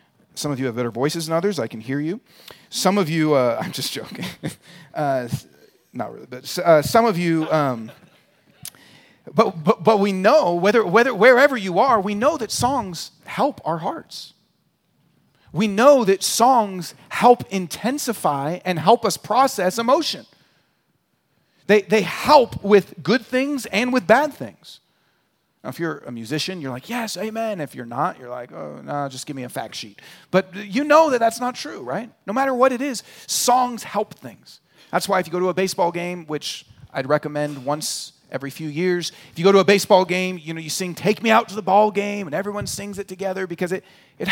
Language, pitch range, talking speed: English, 165-230 Hz, 200 wpm